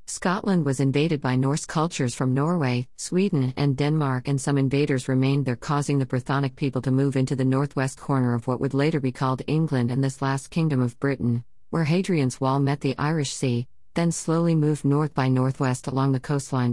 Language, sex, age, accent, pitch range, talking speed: English, female, 50-69, American, 130-155 Hz, 195 wpm